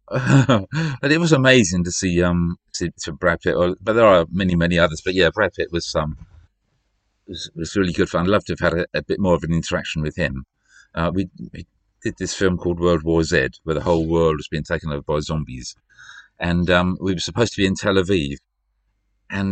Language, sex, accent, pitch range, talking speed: English, male, British, 85-105 Hz, 230 wpm